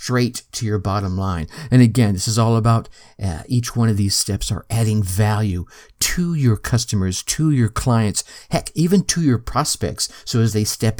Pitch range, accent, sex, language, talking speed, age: 100-125 Hz, American, male, English, 190 wpm, 50-69